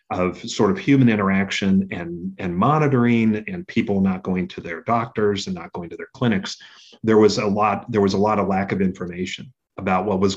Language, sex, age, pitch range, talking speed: English, male, 40-59, 95-115 Hz, 210 wpm